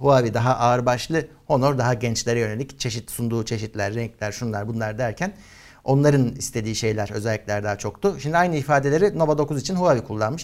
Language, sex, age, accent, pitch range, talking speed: Turkish, male, 60-79, native, 110-135 Hz, 160 wpm